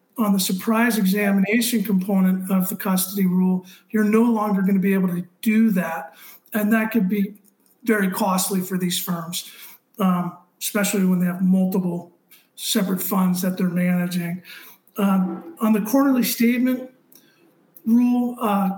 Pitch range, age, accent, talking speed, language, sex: 185-215 Hz, 50-69, American, 145 wpm, English, male